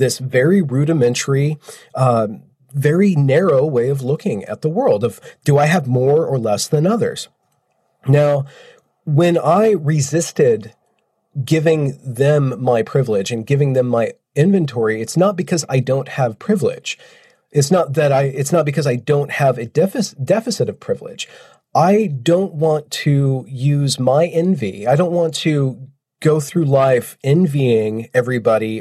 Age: 30-49